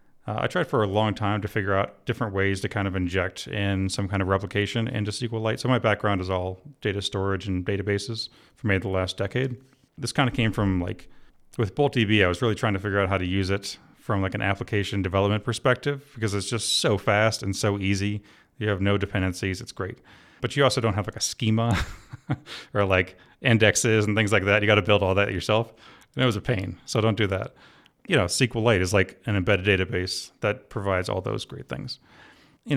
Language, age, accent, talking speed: English, 30-49, American, 225 wpm